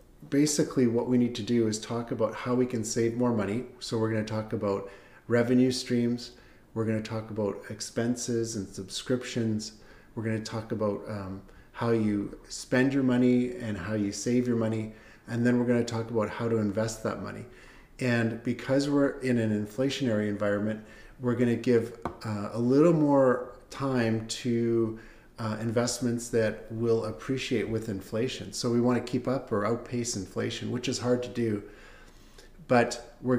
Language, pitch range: English, 110-125 Hz